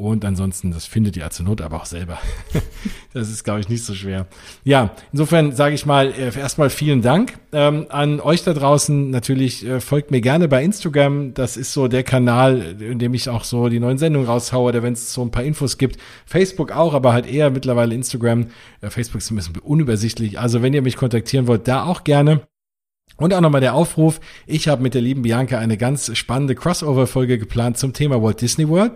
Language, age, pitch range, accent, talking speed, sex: German, 40-59, 120-145 Hz, German, 205 wpm, male